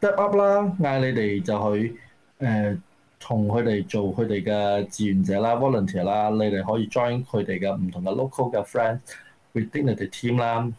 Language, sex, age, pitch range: Chinese, male, 20-39, 100-130 Hz